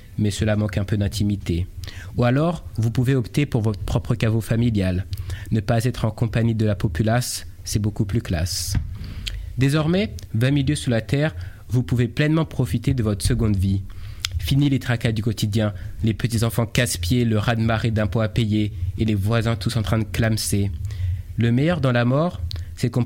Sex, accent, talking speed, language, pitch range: male, French, 185 wpm, French, 100-125 Hz